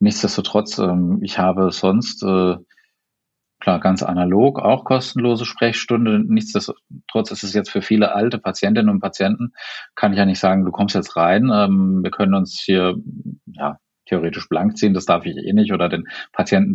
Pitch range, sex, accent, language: 95-125 Hz, male, German, German